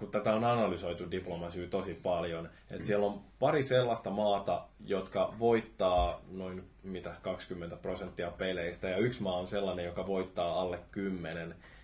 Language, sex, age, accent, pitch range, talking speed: Finnish, male, 20-39, native, 90-105 Hz, 145 wpm